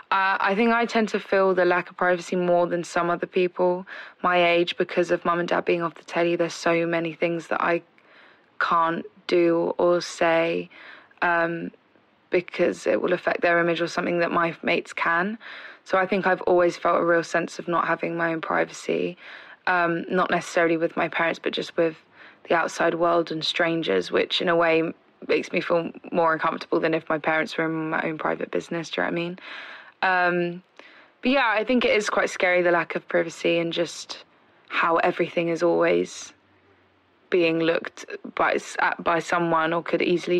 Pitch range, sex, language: 165-180 Hz, female, English